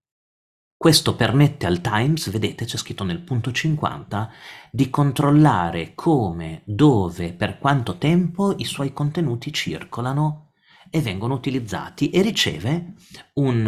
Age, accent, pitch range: 40-59, native, 105-160 Hz